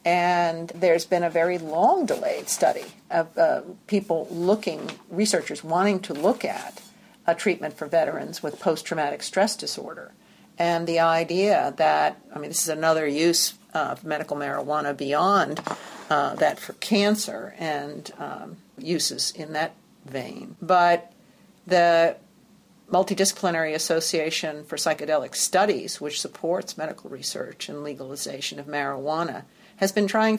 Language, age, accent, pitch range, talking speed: English, 50-69, American, 155-200 Hz, 130 wpm